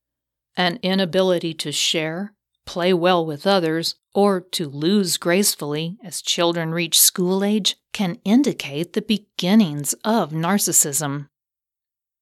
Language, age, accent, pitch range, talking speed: English, 40-59, American, 155-205 Hz, 115 wpm